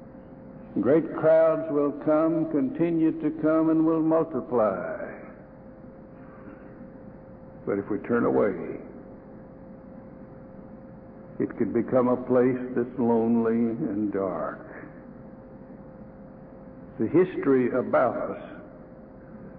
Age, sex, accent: 60-79, male, American